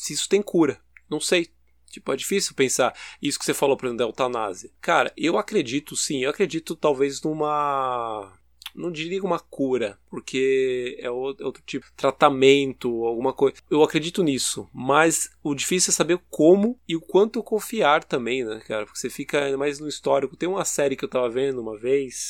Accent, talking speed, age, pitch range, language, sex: Brazilian, 190 wpm, 20-39, 125-150 Hz, Portuguese, male